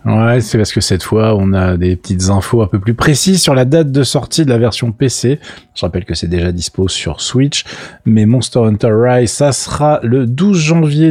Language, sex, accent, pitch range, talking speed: French, male, French, 95-135 Hz, 220 wpm